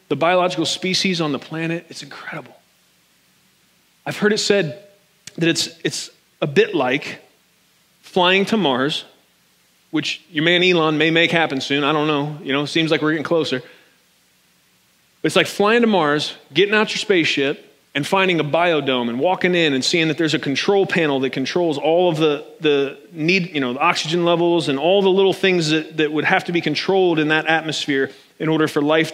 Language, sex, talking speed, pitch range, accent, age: English, male, 195 wpm, 145-180 Hz, American, 30-49